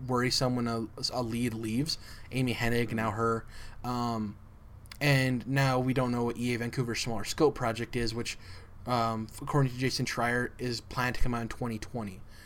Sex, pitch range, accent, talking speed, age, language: male, 110-135 Hz, American, 170 wpm, 20-39, English